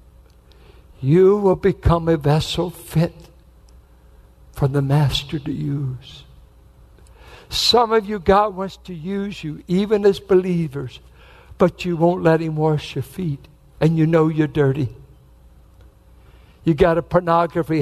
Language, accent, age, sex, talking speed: English, American, 60-79, male, 130 wpm